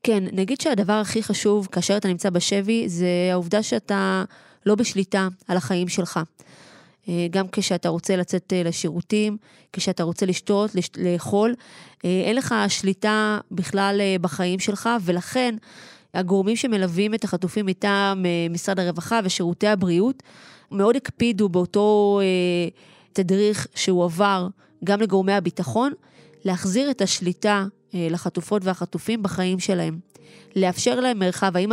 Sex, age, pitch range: female, 20-39, 180-210 Hz